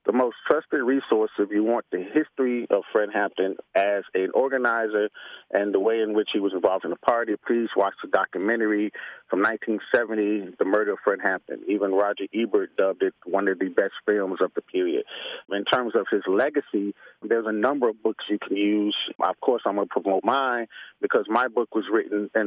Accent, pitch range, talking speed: American, 105-145 Hz, 205 wpm